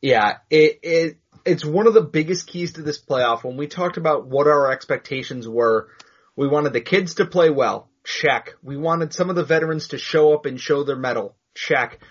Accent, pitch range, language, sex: American, 140-175 Hz, English, male